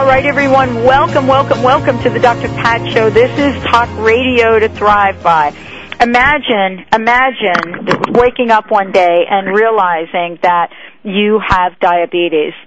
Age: 50-69